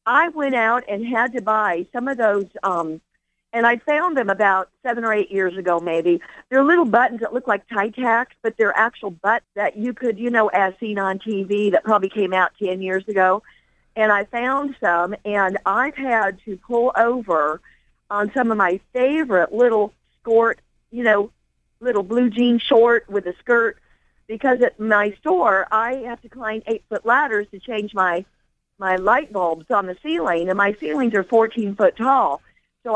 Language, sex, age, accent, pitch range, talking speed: English, female, 50-69, American, 205-255 Hz, 185 wpm